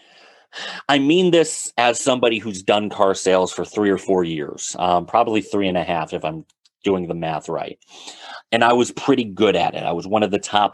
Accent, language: American, English